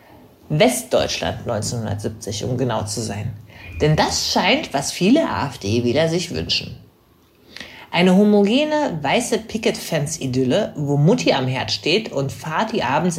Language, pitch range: German, 120-165 Hz